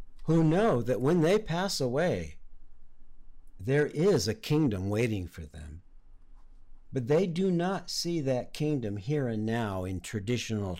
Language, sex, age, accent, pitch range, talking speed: English, male, 50-69, American, 100-145 Hz, 145 wpm